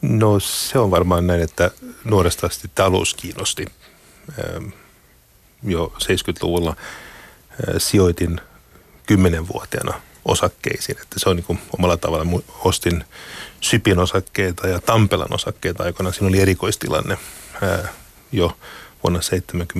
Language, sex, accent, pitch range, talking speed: Finnish, male, native, 90-100 Hz, 105 wpm